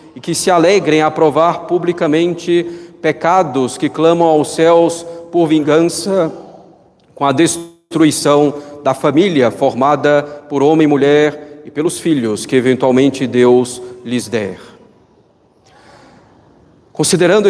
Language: Portuguese